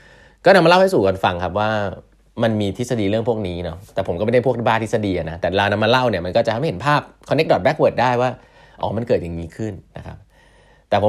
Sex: male